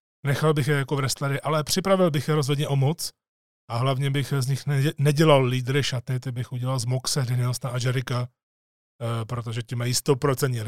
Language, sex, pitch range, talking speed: Czech, male, 120-145 Hz, 185 wpm